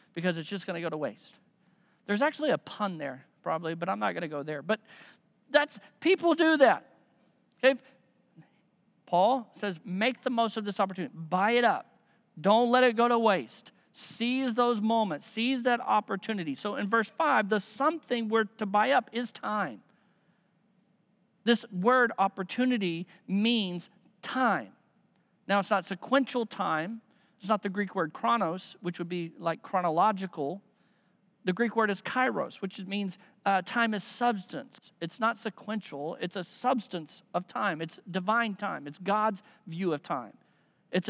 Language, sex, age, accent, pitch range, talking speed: English, male, 50-69, American, 185-230 Hz, 160 wpm